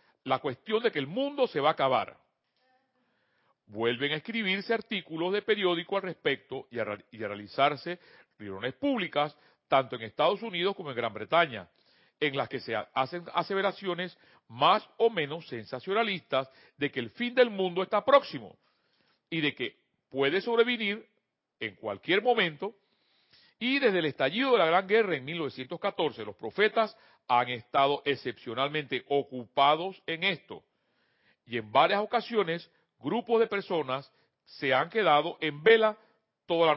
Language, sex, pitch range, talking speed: Spanish, male, 135-215 Hz, 150 wpm